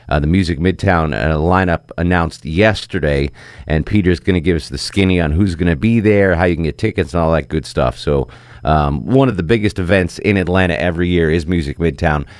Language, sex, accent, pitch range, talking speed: English, male, American, 90-115 Hz, 225 wpm